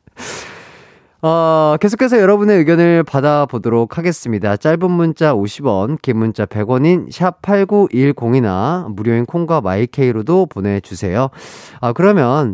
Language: Korean